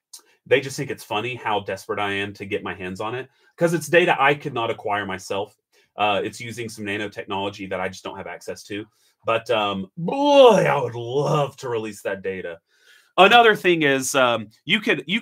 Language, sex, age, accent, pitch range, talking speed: English, male, 30-49, American, 115-160 Hz, 205 wpm